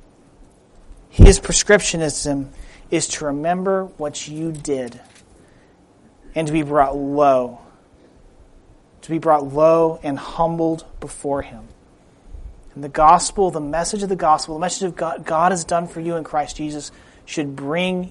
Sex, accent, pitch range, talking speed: male, American, 150-195 Hz, 145 wpm